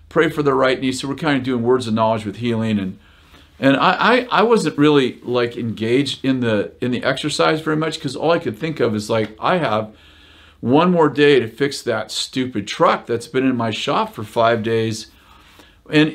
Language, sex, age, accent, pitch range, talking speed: Dutch, male, 50-69, American, 110-145 Hz, 215 wpm